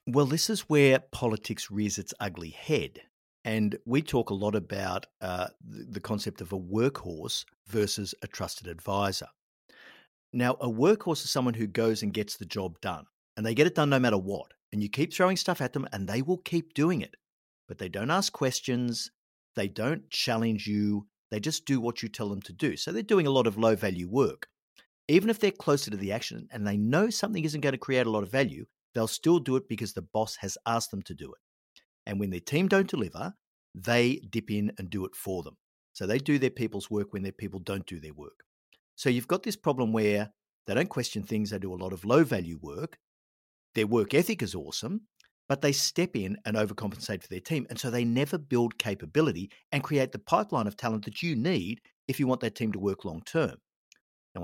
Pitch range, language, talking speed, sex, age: 100-135 Hz, English, 220 wpm, male, 50-69